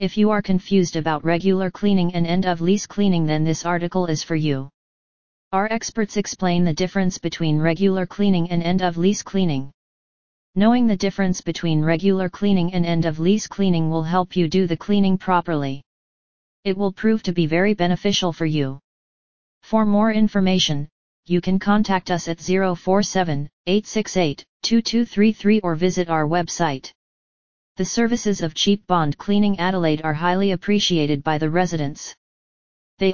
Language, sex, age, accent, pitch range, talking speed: English, female, 30-49, American, 165-195 Hz, 145 wpm